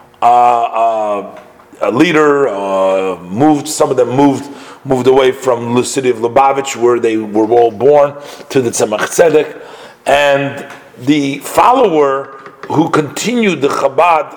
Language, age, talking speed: English, 40-59, 140 wpm